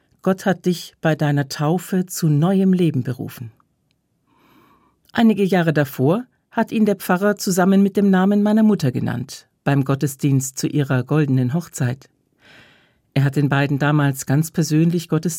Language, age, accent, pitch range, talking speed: German, 50-69, German, 135-185 Hz, 150 wpm